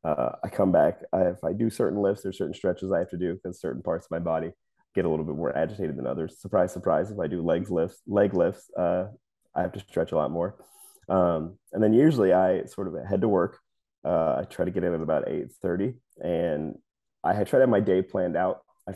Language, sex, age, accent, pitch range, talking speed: English, male, 30-49, American, 90-105 Hz, 245 wpm